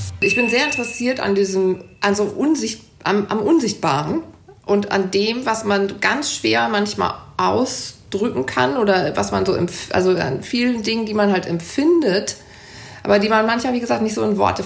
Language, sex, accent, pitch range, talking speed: German, female, German, 185-220 Hz, 180 wpm